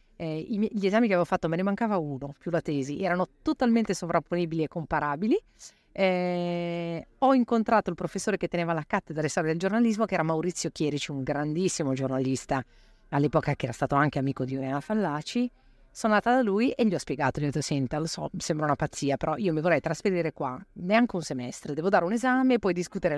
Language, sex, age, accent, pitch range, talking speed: Italian, female, 40-59, native, 155-230 Hz, 200 wpm